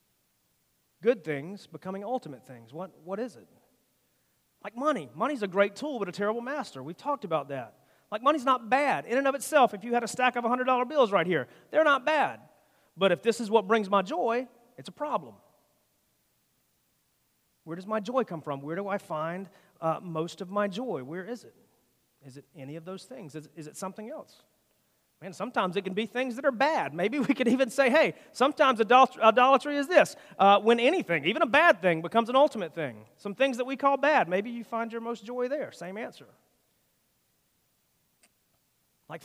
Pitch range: 160-250 Hz